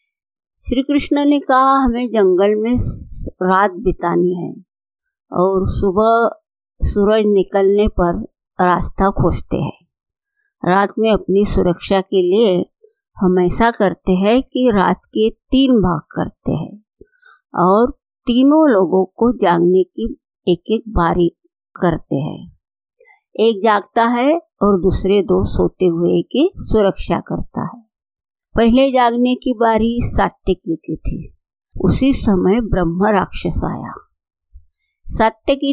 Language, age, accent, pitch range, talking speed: Hindi, 50-69, native, 185-260 Hz, 115 wpm